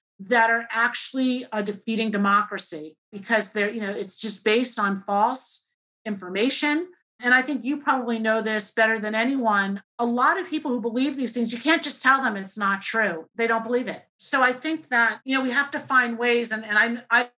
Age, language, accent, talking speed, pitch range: 40-59, English, American, 205 wpm, 195-240 Hz